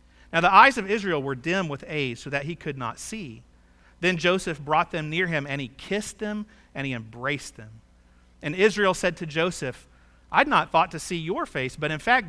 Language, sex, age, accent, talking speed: English, male, 40-59, American, 215 wpm